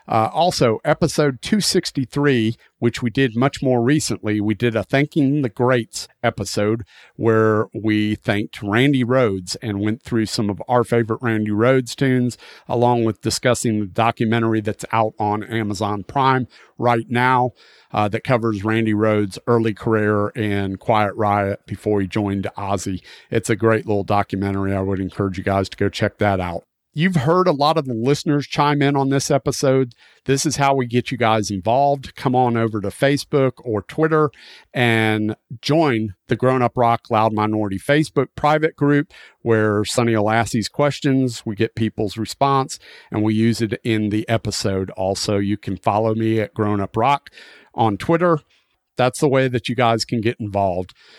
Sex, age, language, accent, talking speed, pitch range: male, 50-69, English, American, 175 wpm, 105-130 Hz